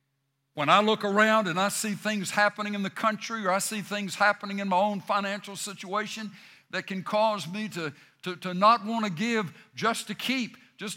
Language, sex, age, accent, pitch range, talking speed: English, male, 60-79, American, 165-225 Hz, 200 wpm